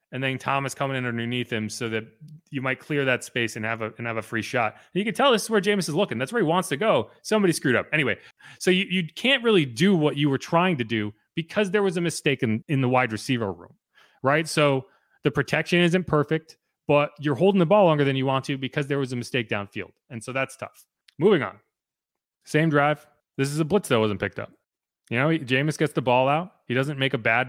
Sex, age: male, 30-49